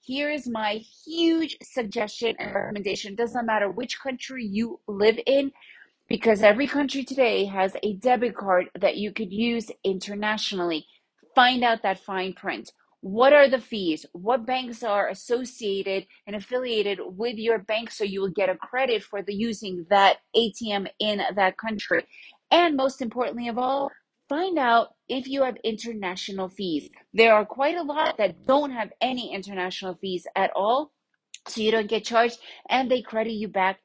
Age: 30-49